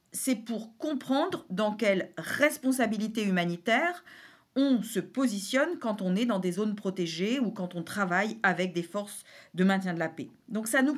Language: French